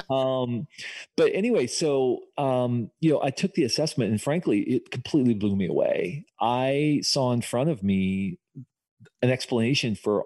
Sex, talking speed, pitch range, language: male, 160 wpm, 105-125 Hz, English